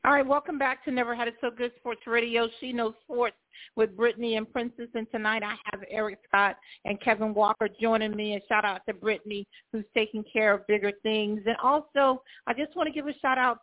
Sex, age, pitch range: female, 50-69, 210-250 Hz